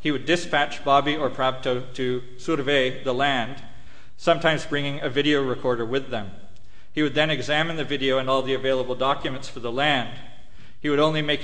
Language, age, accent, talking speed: English, 40-59, American, 190 wpm